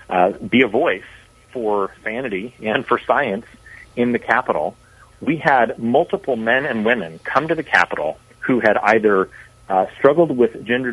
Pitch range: 105-130 Hz